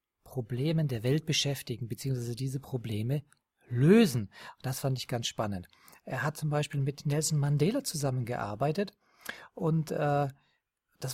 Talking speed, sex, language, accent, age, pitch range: 130 wpm, male, German, German, 40-59, 130-160 Hz